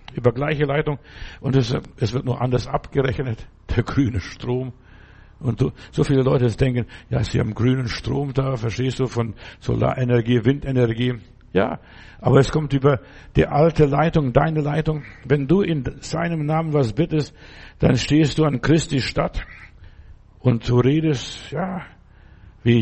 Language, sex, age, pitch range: German, male, 60-79, 120-145 Hz